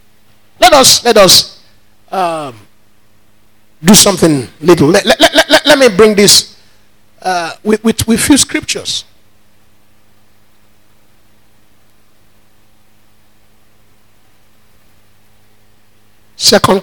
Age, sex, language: 50-69, male, English